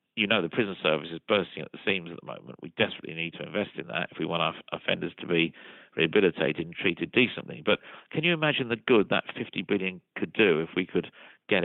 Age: 50-69